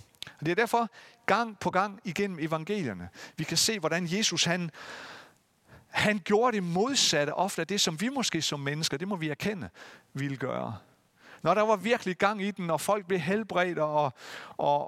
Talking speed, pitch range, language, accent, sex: 185 wpm, 135-195 Hz, Danish, native, male